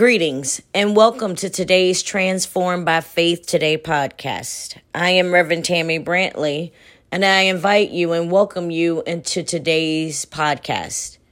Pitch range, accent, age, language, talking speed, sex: 145-185 Hz, American, 30-49, English, 135 wpm, female